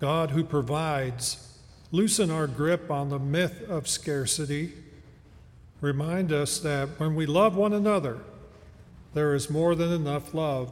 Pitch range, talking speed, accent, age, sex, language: 140-175 Hz, 140 wpm, American, 50-69, male, English